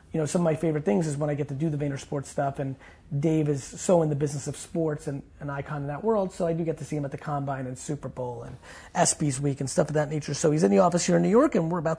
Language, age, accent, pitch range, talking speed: English, 30-49, American, 140-165 Hz, 320 wpm